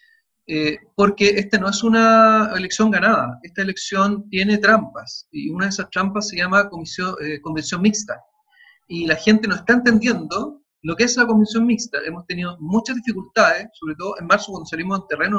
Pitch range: 165-220 Hz